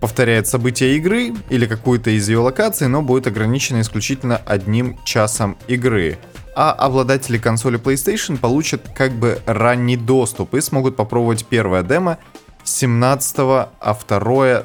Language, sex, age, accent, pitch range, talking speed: Russian, male, 20-39, native, 105-130 Hz, 130 wpm